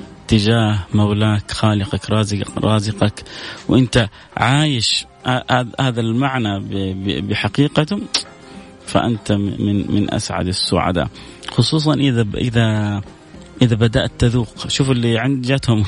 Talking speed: 95 wpm